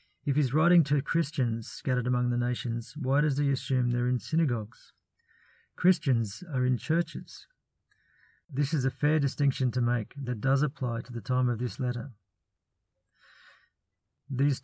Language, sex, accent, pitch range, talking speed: English, male, Australian, 120-145 Hz, 150 wpm